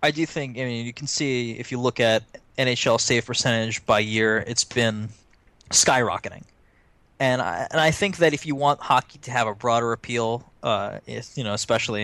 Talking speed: 200 wpm